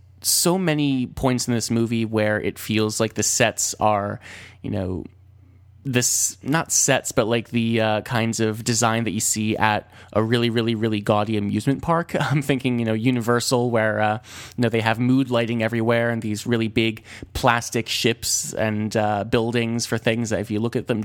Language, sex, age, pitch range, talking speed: English, male, 20-39, 105-125 Hz, 195 wpm